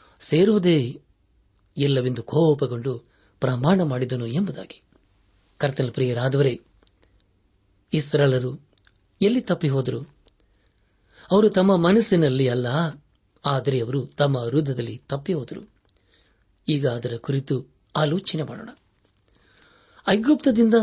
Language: Kannada